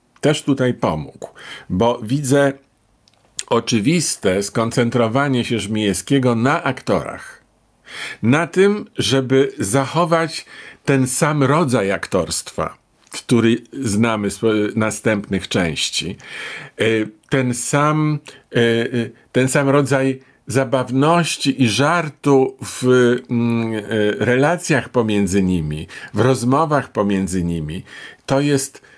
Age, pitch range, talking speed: 50-69, 120-140 Hz, 85 wpm